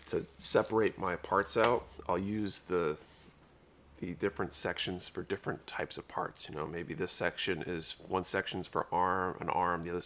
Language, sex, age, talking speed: English, male, 30-49, 180 wpm